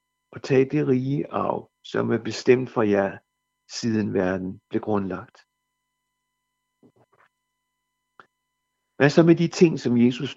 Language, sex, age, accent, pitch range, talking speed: Danish, male, 60-79, native, 110-125 Hz, 120 wpm